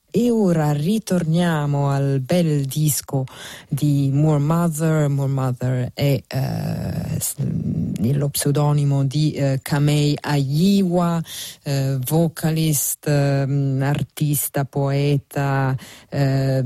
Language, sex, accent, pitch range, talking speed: Italian, female, native, 140-165 Hz, 90 wpm